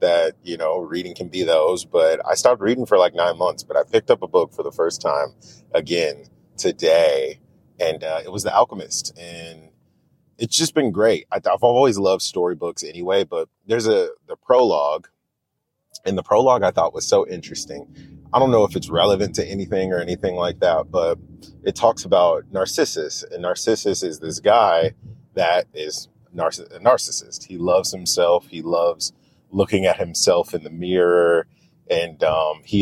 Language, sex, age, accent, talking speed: English, male, 30-49, American, 180 wpm